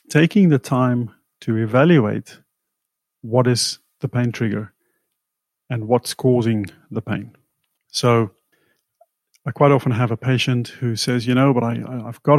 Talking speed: 140 wpm